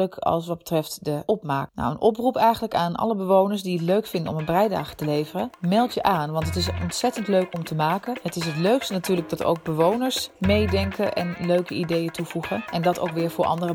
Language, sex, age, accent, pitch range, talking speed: Dutch, female, 30-49, Dutch, 160-195 Hz, 225 wpm